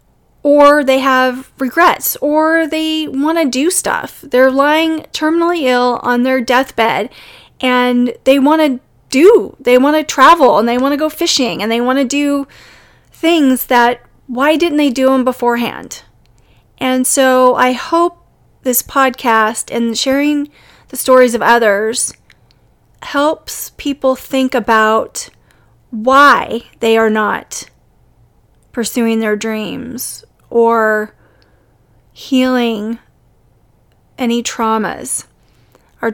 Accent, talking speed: American, 125 wpm